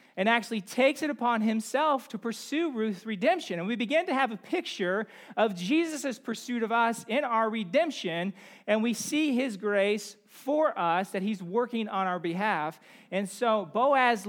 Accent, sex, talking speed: American, male, 170 wpm